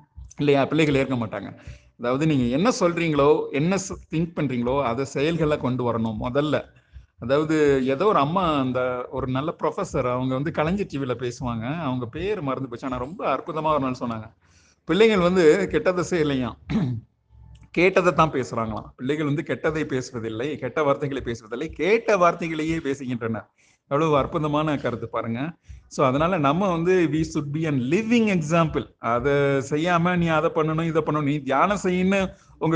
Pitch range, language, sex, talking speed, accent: 125-160 Hz, Tamil, male, 120 wpm, native